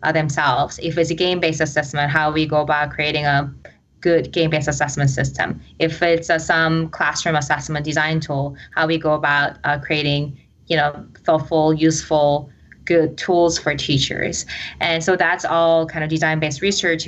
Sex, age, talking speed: female, 20-39, 165 wpm